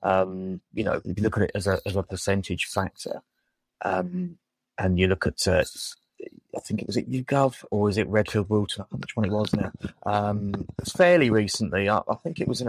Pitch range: 105-135 Hz